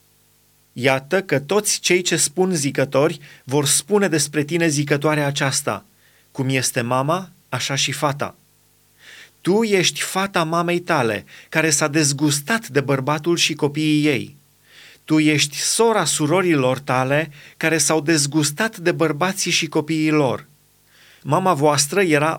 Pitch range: 145-180 Hz